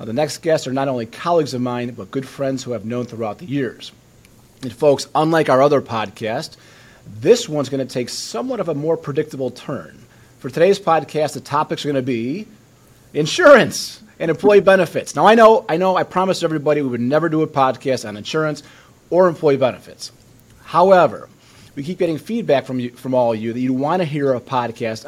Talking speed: 205 wpm